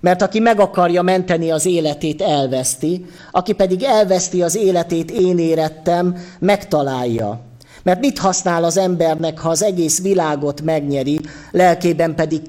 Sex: male